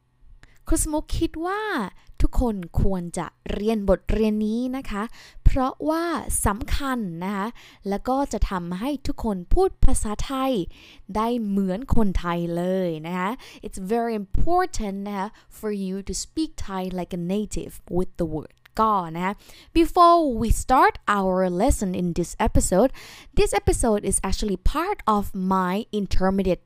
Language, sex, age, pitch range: Thai, female, 20-39, 180-245 Hz